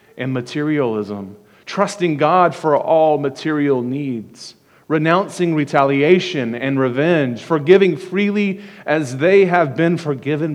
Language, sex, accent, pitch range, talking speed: English, male, American, 130-180 Hz, 110 wpm